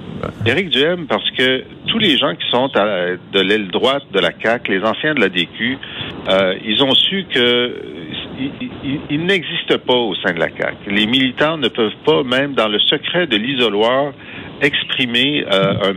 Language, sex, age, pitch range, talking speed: French, male, 50-69, 100-135 Hz, 175 wpm